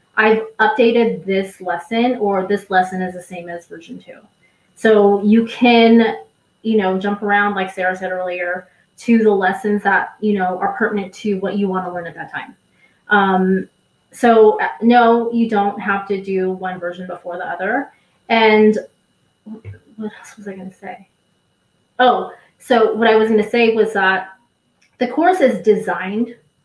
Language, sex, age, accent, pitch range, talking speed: English, female, 20-39, American, 195-230 Hz, 170 wpm